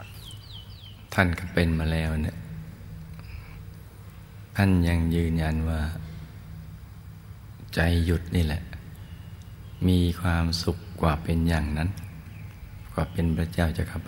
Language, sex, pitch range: Thai, male, 80-95 Hz